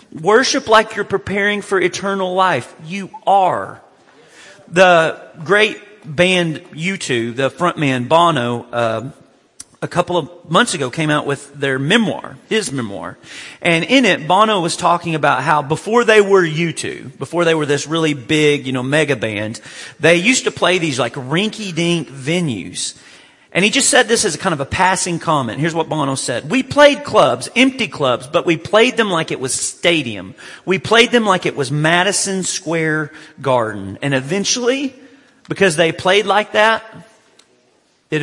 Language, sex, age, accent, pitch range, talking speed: English, male, 40-59, American, 155-210 Hz, 165 wpm